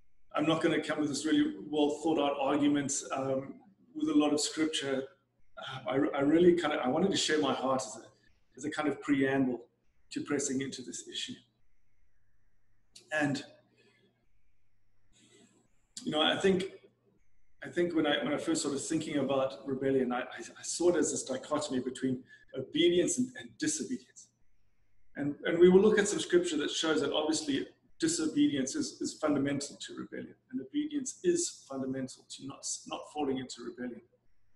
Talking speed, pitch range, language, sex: 170 wpm, 125-210 Hz, English, male